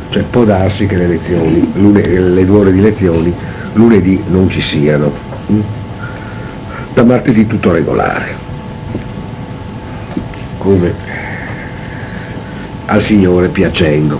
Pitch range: 85-110 Hz